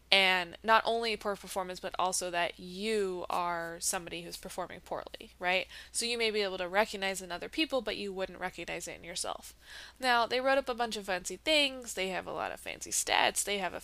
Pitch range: 180-215 Hz